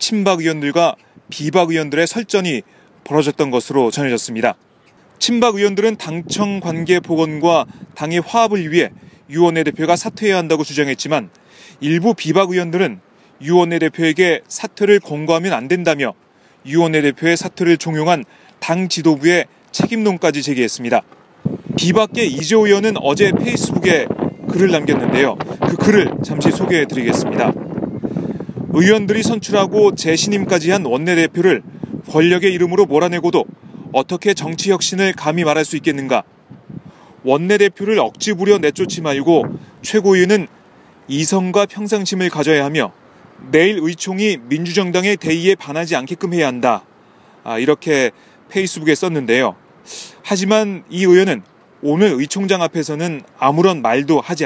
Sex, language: male, Korean